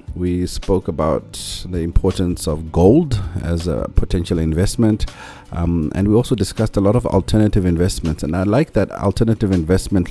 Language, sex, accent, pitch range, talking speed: English, male, South African, 85-100 Hz, 160 wpm